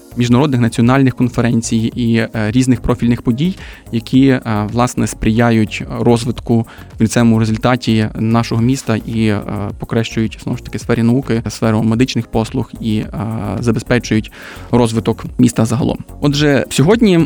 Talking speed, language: 115 wpm, Ukrainian